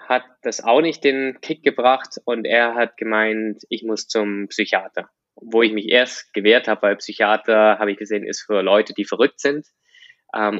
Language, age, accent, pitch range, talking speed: German, 20-39, German, 105-120 Hz, 185 wpm